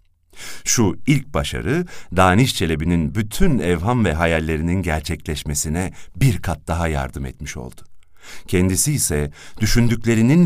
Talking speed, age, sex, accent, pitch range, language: 110 wpm, 50-69, male, native, 85-120 Hz, Turkish